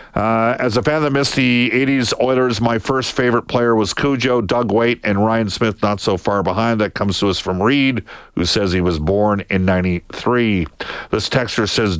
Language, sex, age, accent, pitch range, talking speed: English, male, 50-69, American, 95-120 Hz, 205 wpm